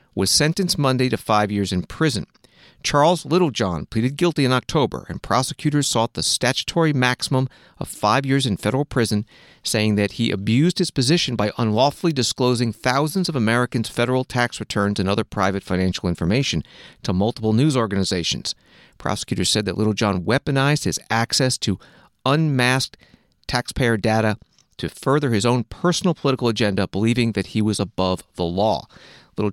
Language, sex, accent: English, male, American